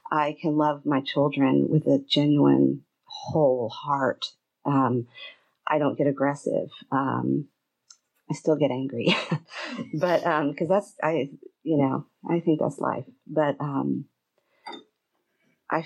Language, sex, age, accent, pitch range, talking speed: English, female, 40-59, American, 140-180 Hz, 130 wpm